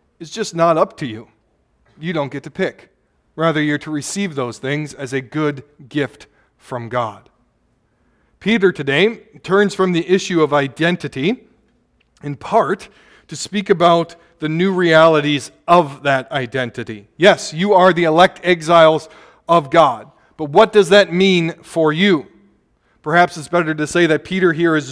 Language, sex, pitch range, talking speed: English, male, 140-175 Hz, 160 wpm